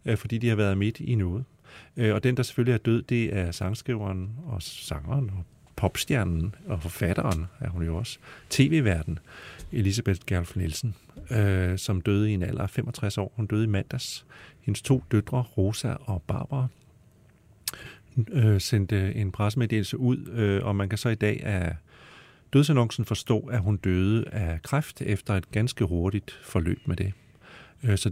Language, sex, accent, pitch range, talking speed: Danish, male, native, 95-125 Hz, 160 wpm